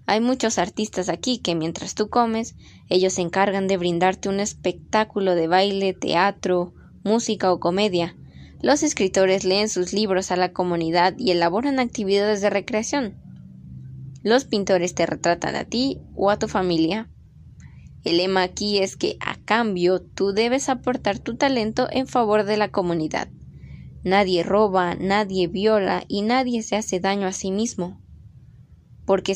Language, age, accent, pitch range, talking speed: Spanish, 10-29, Mexican, 175-215 Hz, 150 wpm